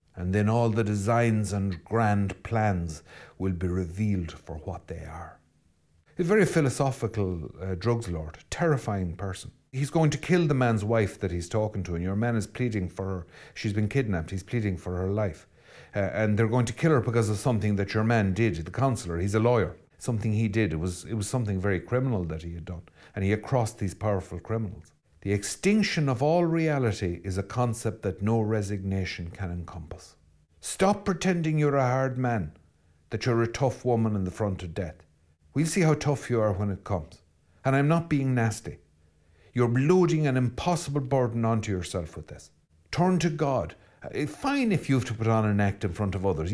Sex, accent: male, Irish